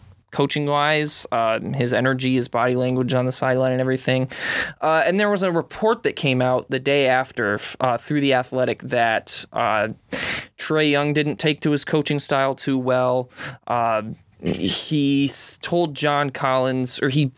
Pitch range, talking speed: 125-150 Hz, 165 wpm